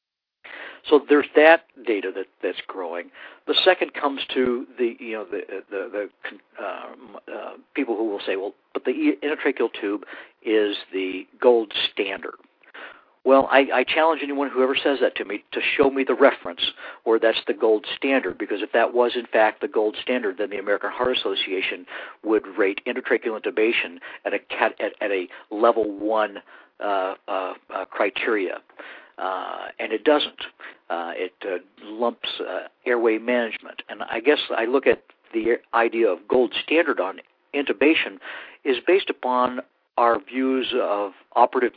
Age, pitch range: 60-79, 110-150 Hz